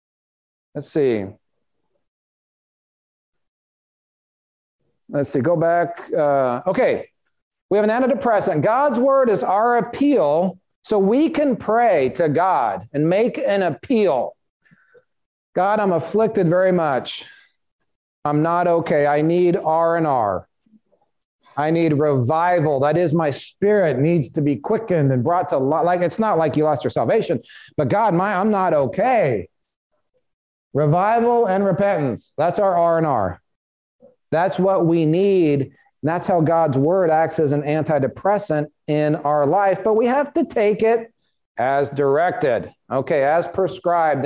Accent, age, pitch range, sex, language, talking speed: American, 40-59, 150-205 Hz, male, English, 140 wpm